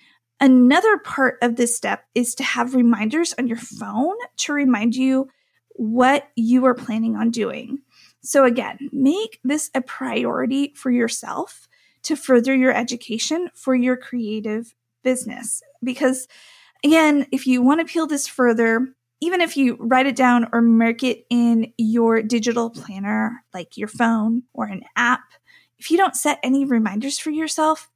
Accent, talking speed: American, 155 wpm